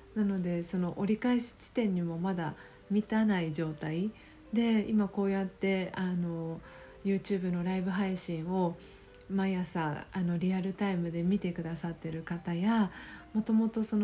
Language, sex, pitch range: Japanese, female, 175-205 Hz